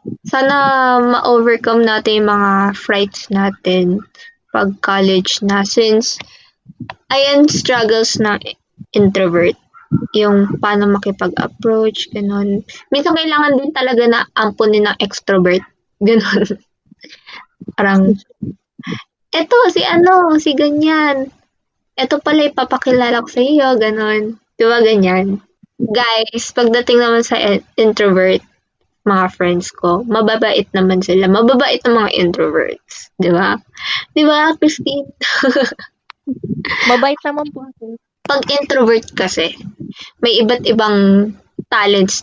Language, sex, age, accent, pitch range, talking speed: Filipino, female, 20-39, native, 195-260 Hz, 100 wpm